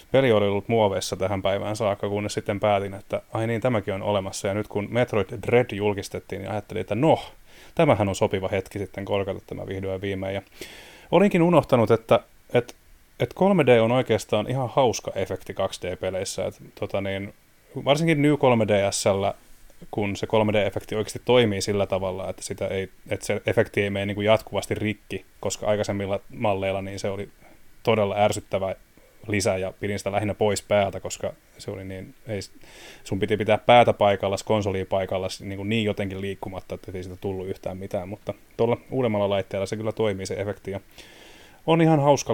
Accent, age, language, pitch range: native, 30-49, Finnish, 100-115 Hz